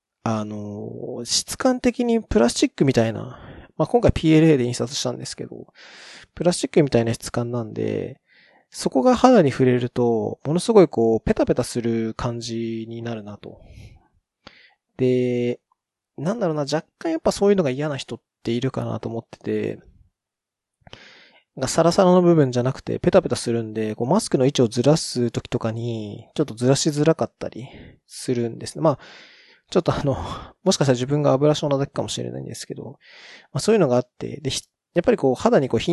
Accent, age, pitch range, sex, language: native, 20-39, 115-160 Hz, male, Japanese